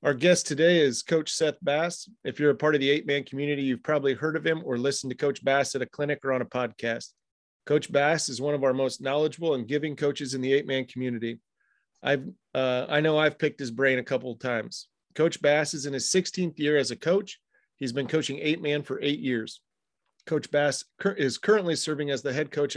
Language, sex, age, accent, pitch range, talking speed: English, male, 40-59, American, 130-155 Hz, 225 wpm